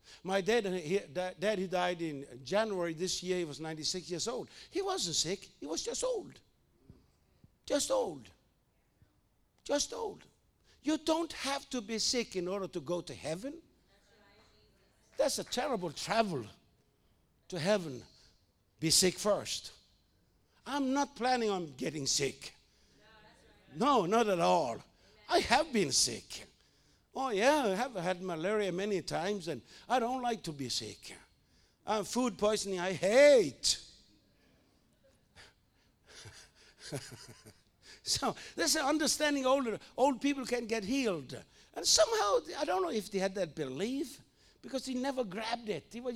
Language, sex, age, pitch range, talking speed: English, male, 60-79, 175-260 Hz, 140 wpm